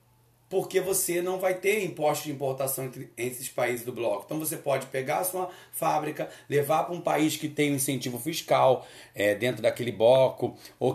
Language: Portuguese